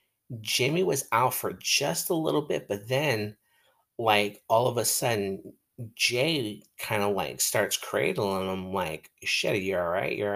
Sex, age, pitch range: male, 30-49, 95-115 Hz